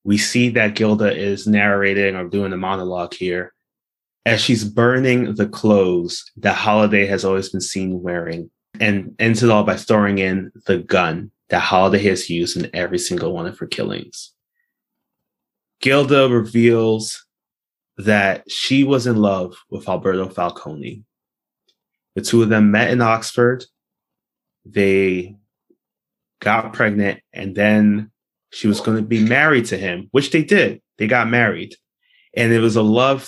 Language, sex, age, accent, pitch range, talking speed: English, male, 20-39, American, 100-115 Hz, 150 wpm